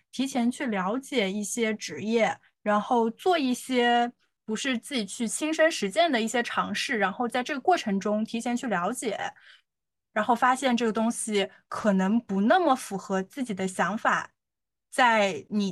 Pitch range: 205-250 Hz